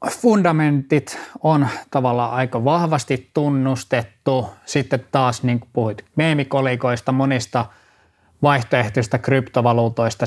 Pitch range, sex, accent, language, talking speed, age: 115-140 Hz, male, native, Finnish, 90 wpm, 20-39